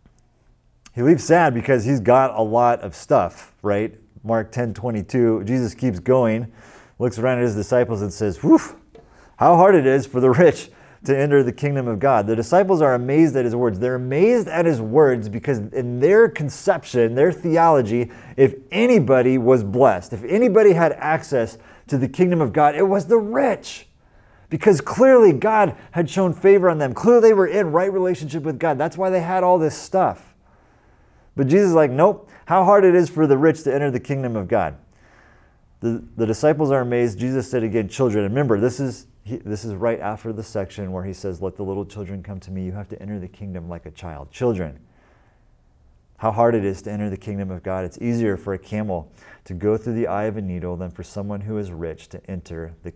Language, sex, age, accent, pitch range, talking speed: English, male, 30-49, American, 100-145 Hz, 210 wpm